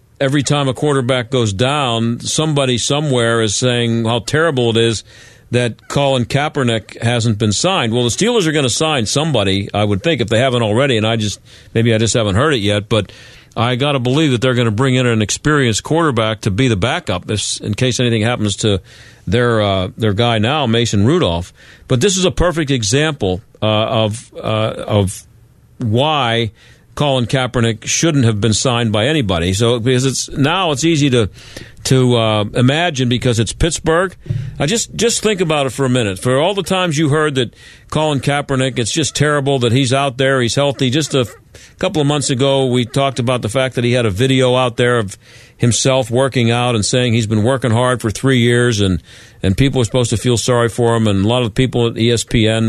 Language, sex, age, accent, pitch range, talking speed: English, male, 50-69, American, 110-135 Hz, 210 wpm